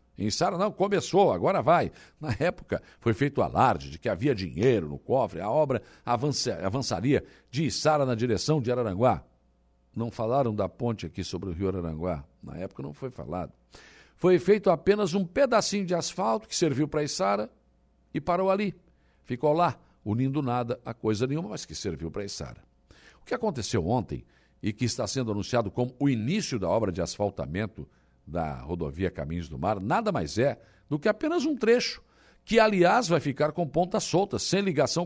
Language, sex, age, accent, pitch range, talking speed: Portuguese, male, 60-79, Brazilian, 95-160 Hz, 180 wpm